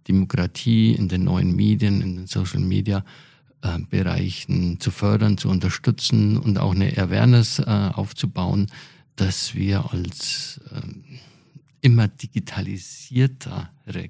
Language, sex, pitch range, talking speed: German, male, 95-135 Hz, 105 wpm